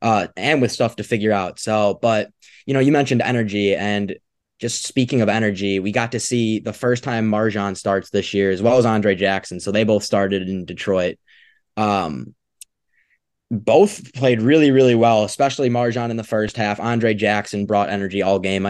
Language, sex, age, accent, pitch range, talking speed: English, male, 20-39, American, 105-125 Hz, 190 wpm